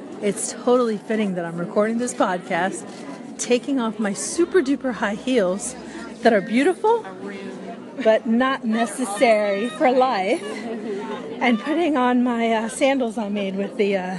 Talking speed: 145 wpm